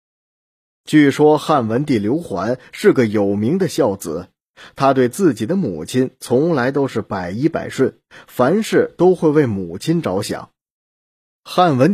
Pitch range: 110-155 Hz